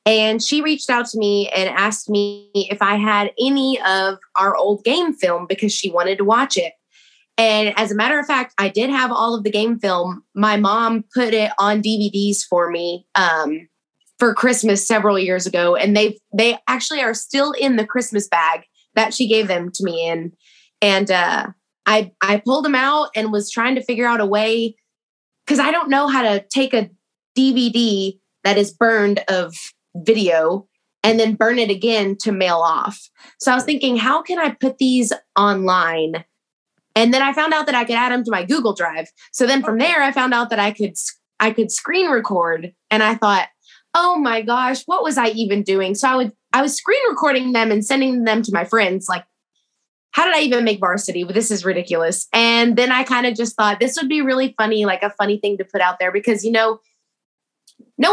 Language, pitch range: English, 195-245 Hz